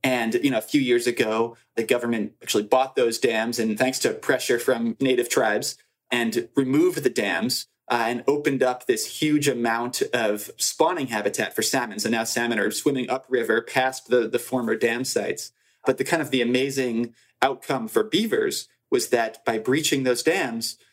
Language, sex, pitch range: English, male, 120-155 Hz